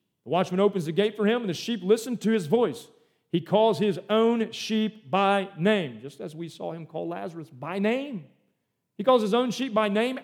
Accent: American